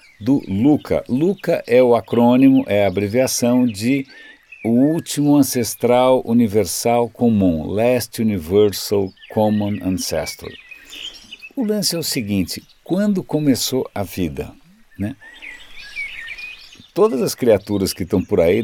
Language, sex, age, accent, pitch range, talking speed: Portuguese, male, 60-79, Brazilian, 100-140 Hz, 115 wpm